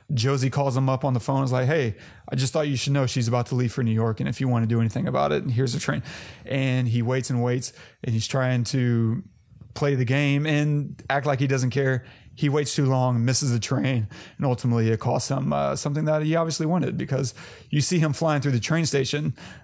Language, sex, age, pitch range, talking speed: English, male, 30-49, 125-145 Hz, 245 wpm